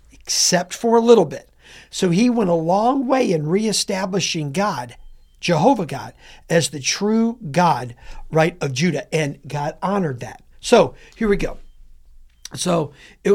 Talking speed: 150 wpm